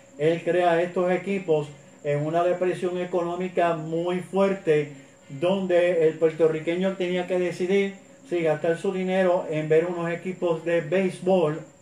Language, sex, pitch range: Spanish, male, 165-200 Hz